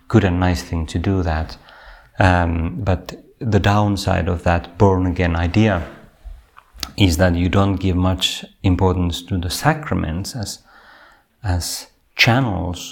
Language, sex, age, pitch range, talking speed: Finnish, male, 30-49, 85-100 Hz, 130 wpm